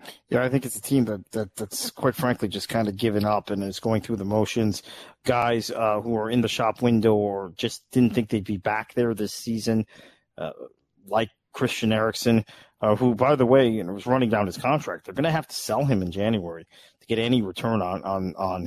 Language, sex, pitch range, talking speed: English, male, 110-135 Hz, 230 wpm